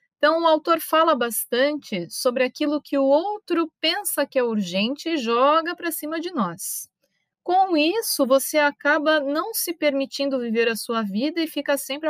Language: Portuguese